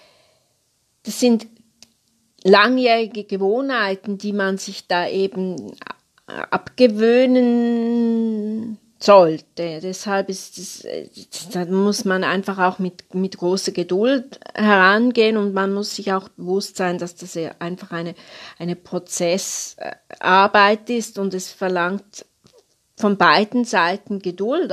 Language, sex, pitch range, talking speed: German, female, 180-220 Hz, 110 wpm